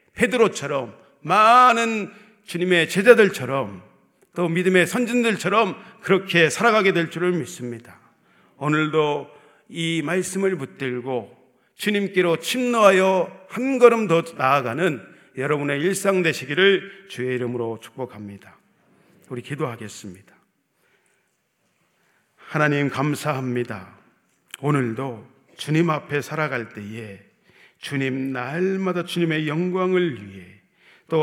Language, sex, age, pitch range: Korean, male, 40-59, 135-190 Hz